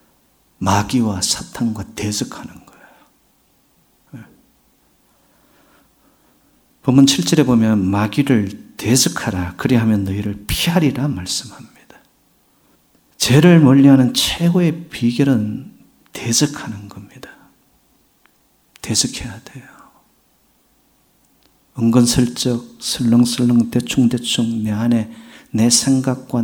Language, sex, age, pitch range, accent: Korean, male, 40-59, 110-140 Hz, native